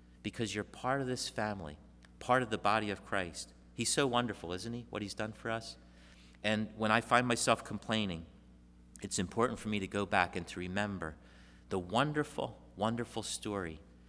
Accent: American